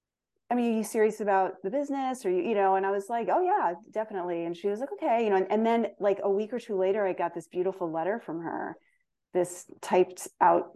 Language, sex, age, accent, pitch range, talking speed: English, female, 30-49, American, 175-230 Hz, 250 wpm